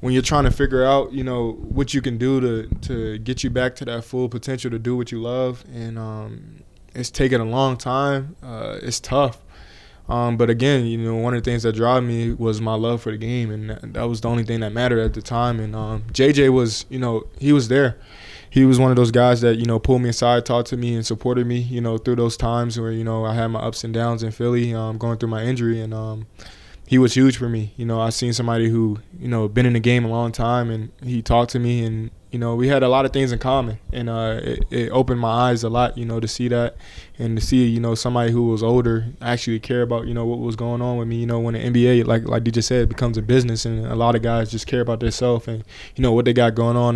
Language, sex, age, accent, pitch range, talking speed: English, male, 20-39, American, 115-125 Hz, 275 wpm